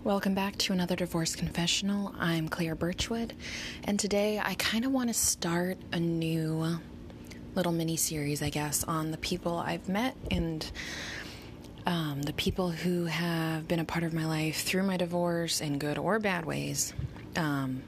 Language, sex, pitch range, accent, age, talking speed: English, female, 150-185 Hz, American, 20-39, 165 wpm